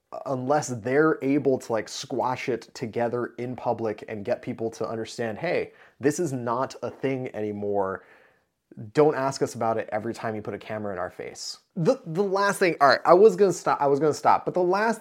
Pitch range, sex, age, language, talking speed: 125-170 Hz, male, 20-39, English, 210 wpm